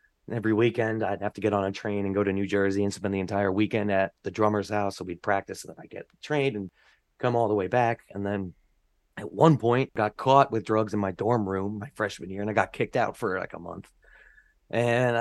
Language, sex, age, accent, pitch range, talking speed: English, male, 30-49, American, 100-120 Hz, 255 wpm